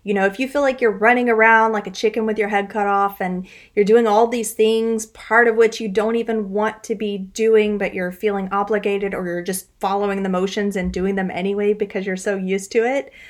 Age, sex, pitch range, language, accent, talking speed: 30-49, female, 200-230 Hz, English, American, 240 wpm